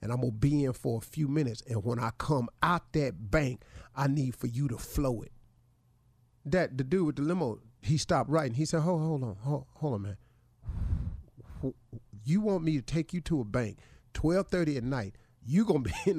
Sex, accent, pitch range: male, American, 120-180 Hz